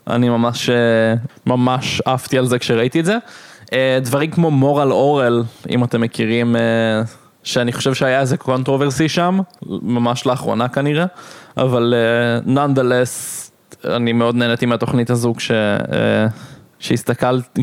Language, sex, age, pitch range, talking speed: Hebrew, male, 20-39, 120-140 Hz, 115 wpm